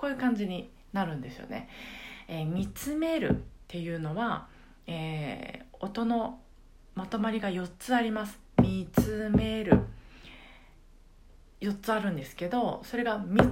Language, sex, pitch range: Japanese, female, 165-245 Hz